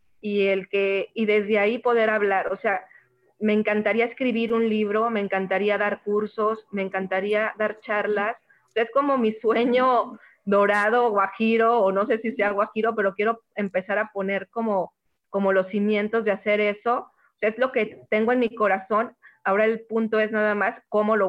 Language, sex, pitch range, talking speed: Spanish, female, 195-225 Hz, 185 wpm